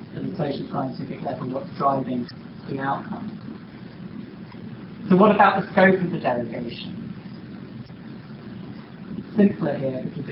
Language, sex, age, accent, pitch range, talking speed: English, male, 40-59, British, 140-195 Hz, 120 wpm